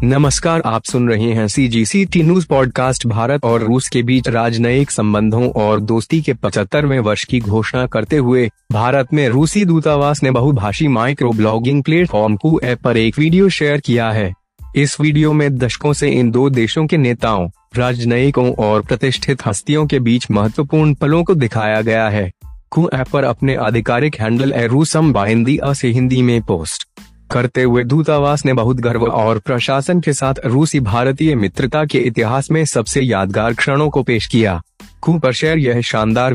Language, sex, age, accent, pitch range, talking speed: Hindi, male, 20-39, native, 115-145 Hz, 155 wpm